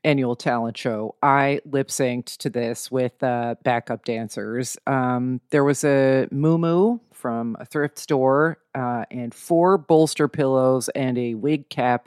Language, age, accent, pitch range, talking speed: English, 40-59, American, 125-155 Hz, 155 wpm